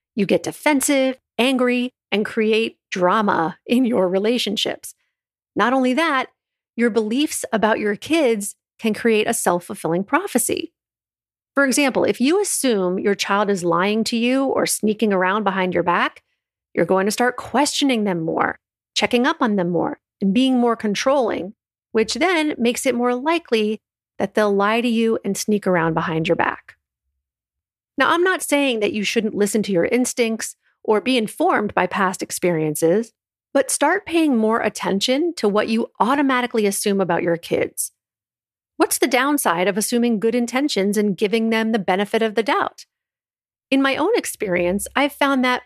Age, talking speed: 40-59, 165 wpm